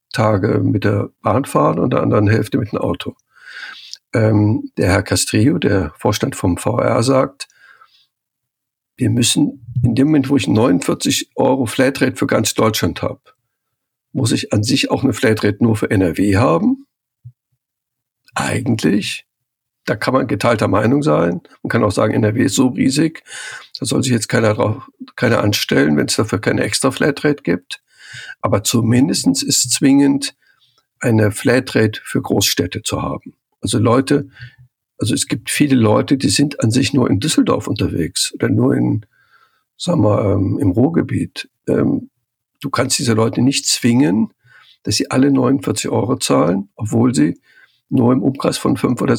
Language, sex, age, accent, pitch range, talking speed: German, male, 60-79, German, 110-135 Hz, 155 wpm